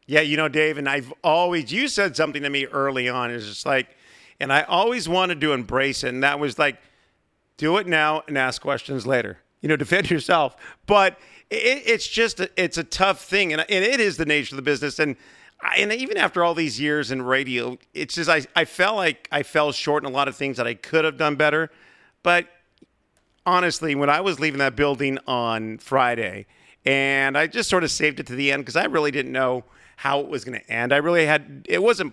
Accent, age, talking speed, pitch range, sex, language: American, 50-69, 240 wpm, 135-160 Hz, male, English